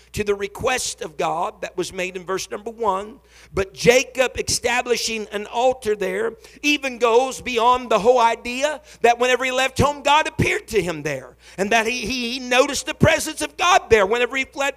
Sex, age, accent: male, 50-69, American